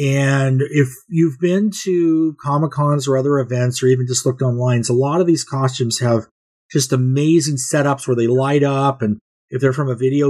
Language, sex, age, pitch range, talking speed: English, male, 40-59, 130-160 Hz, 190 wpm